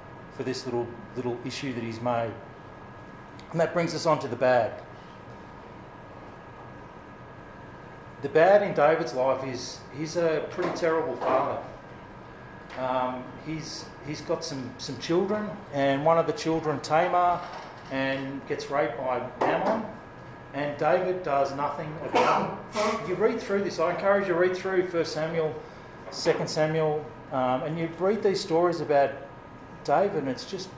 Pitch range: 130-165 Hz